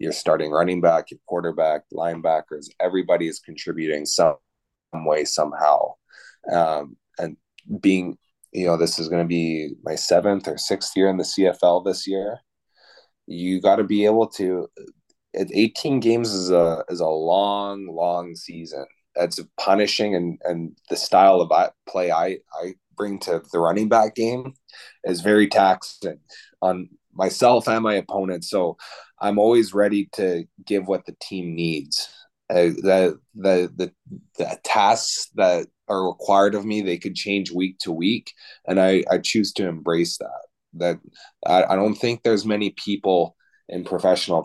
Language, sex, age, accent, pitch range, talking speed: English, male, 20-39, American, 85-110 Hz, 155 wpm